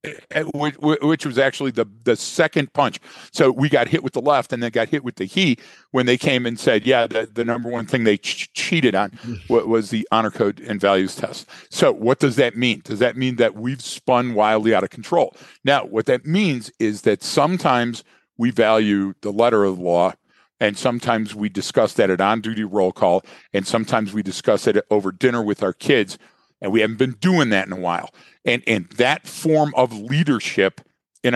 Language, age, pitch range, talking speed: English, 50-69, 105-135 Hz, 205 wpm